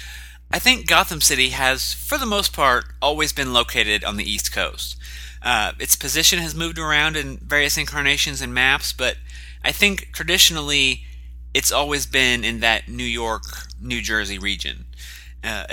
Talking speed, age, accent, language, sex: 160 wpm, 30-49, American, English, male